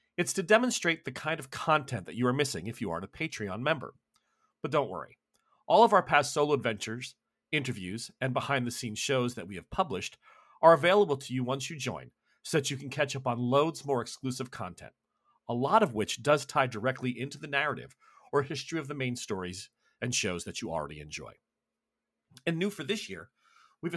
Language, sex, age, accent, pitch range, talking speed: English, male, 40-59, American, 125-160 Hz, 200 wpm